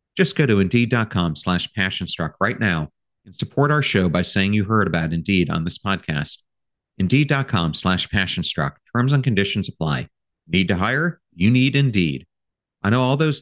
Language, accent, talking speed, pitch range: English, American, 170 wpm, 90-110 Hz